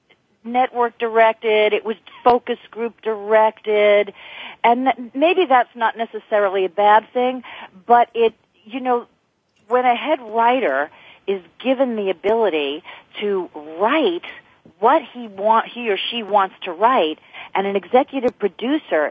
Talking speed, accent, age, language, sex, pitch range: 130 wpm, American, 40-59, English, female, 195-250 Hz